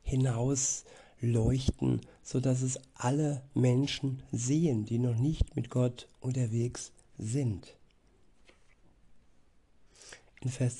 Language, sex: German, male